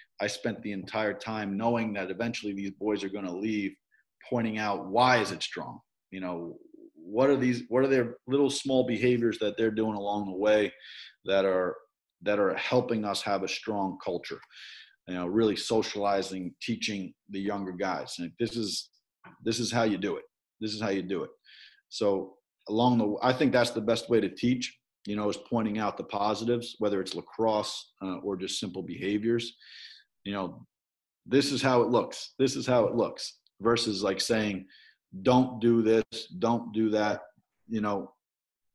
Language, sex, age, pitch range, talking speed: English, male, 40-59, 100-115 Hz, 185 wpm